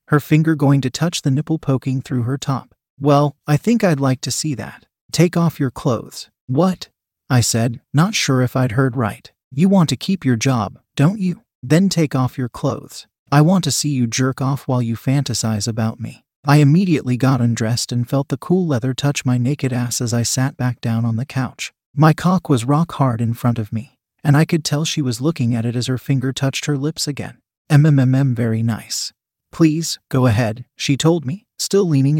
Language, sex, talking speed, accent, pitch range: English, male, 210 wpm, American, 120-150 Hz